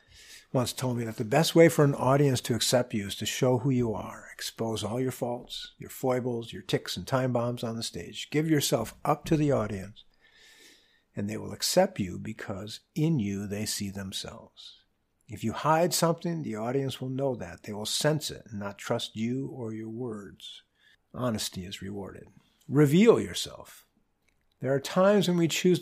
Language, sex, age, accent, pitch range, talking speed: English, male, 50-69, American, 110-150 Hz, 190 wpm